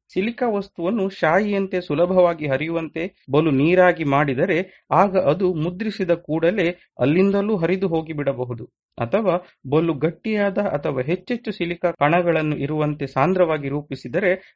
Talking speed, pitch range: 130 wpm, 150-195 Hz